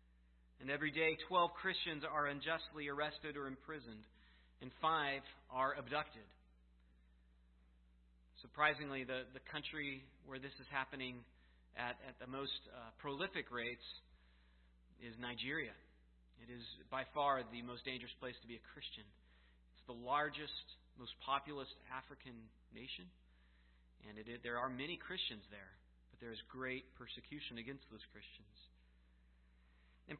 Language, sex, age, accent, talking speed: English, male, 30-49, American, 135 wpm